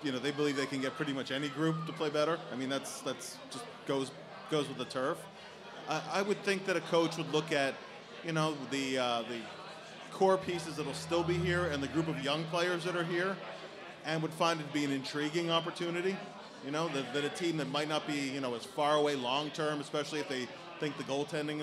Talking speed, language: 240 wpm, English